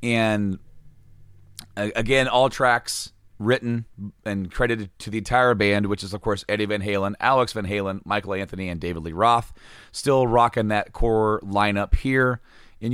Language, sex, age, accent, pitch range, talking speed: English, male, 30-49, American, 95-125 Hz, 160 wpm